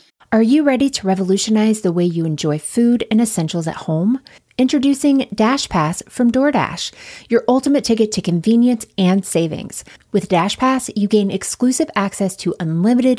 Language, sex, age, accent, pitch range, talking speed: English, female, 20-39, American, 180-240 Hz, 150 wpm